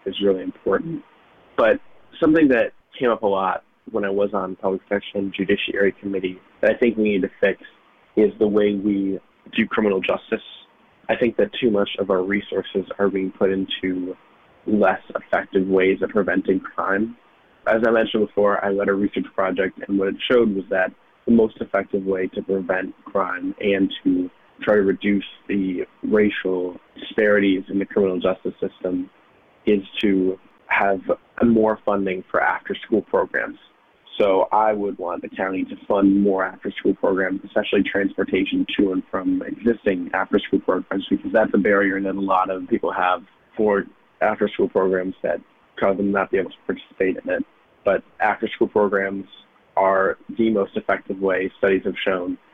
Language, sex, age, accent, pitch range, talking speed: English, male, 20-39, American, 95-105 Hz, 170 wpm